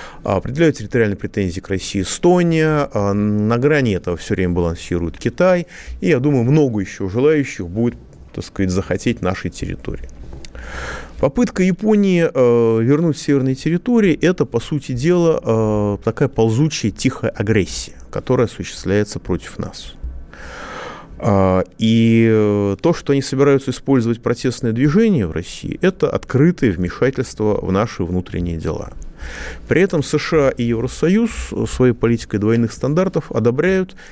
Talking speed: 125 wpm